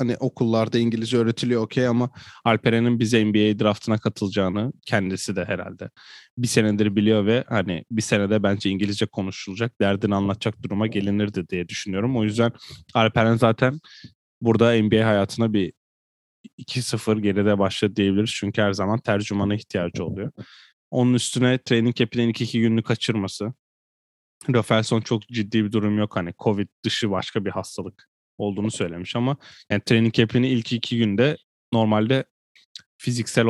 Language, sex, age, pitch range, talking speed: Turkish, male, 10-29, 105-120 Hz, 140 wpm